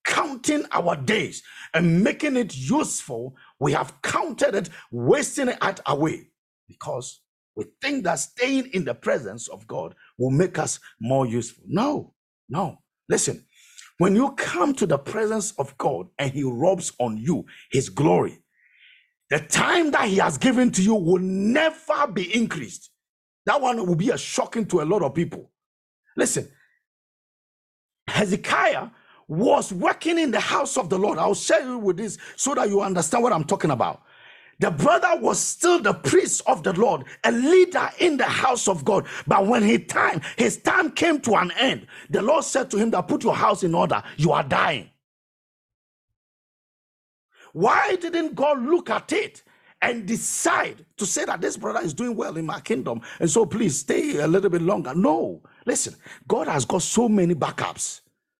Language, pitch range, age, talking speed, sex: English, 180-295 Hz, 50-69, 175 wpm, male